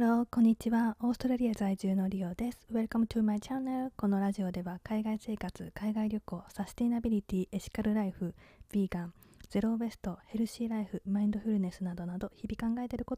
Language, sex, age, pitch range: Japanese, female, 20-39, 190-230 Hz